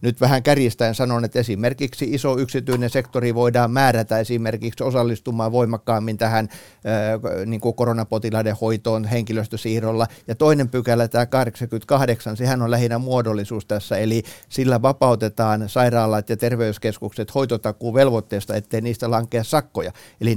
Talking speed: 120 wpm